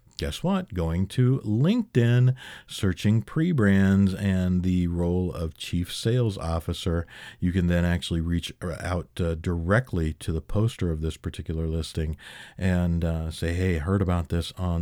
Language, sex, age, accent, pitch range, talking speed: English, male, 50-69, American, 80-105 Hz, 150 wpm